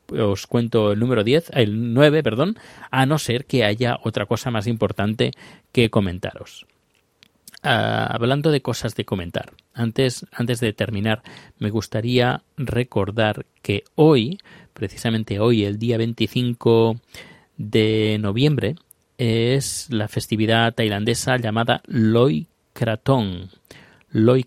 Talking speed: 115 wpm